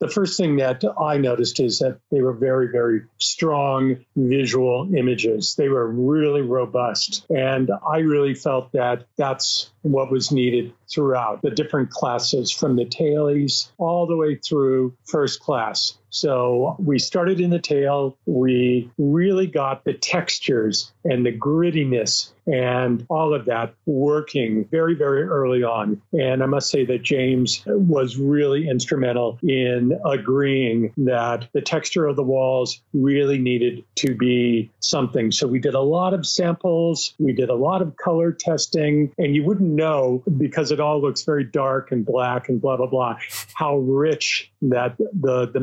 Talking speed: 160 wpm